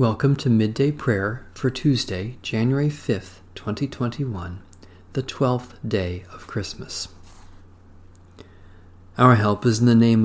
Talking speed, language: 115 wpm, English